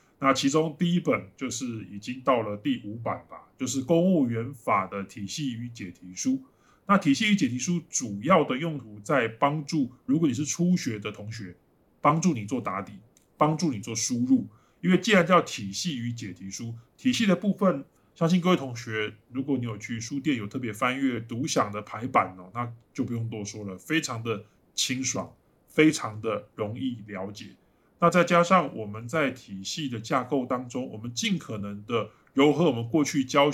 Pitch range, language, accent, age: 110-160 Hz, Chinese, American, 20-39